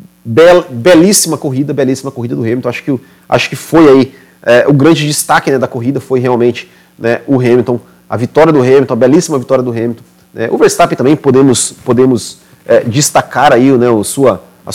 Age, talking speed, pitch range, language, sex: 30-49, 185 wpm, 115-150 Hz, Portuguese, male